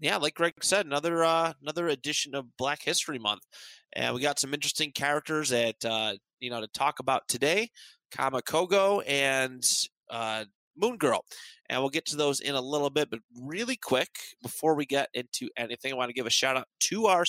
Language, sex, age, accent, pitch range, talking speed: English, male, 30-49, American, 130-165 Hz, 200 wpm